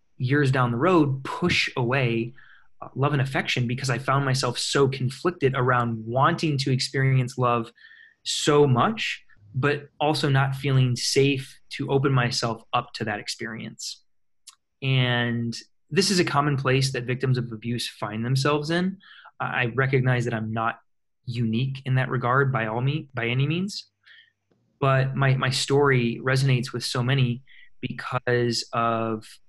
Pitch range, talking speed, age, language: 120-135 Hz, 145 wpm, 20-39, English